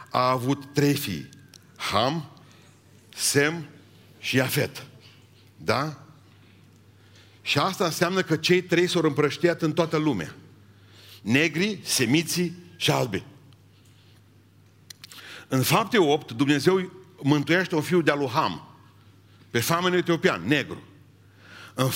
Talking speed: 105 wpm